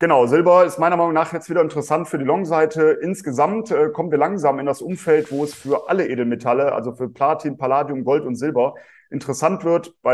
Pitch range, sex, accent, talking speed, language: 135-160 Hz, male, German, 215 wpm, German